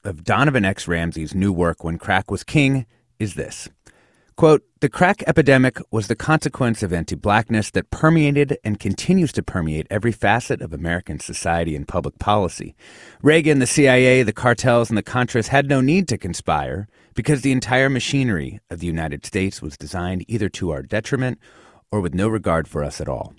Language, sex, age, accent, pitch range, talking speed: English, male, 30-49, American, 85-125 Hz, 180 wpm